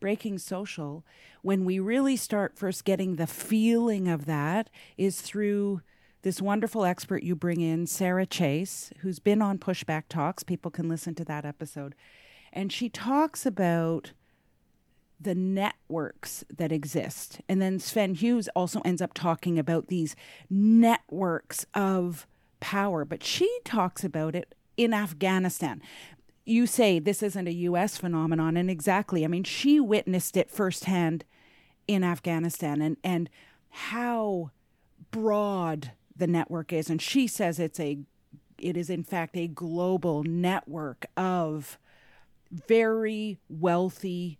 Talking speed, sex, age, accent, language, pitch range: 135 wpm, female, 40-59, American, English, 160-200 Hz